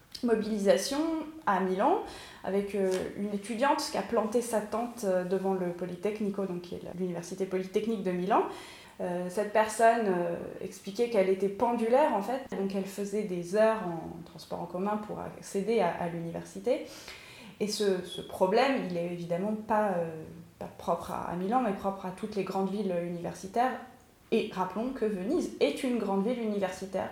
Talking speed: 155 wpm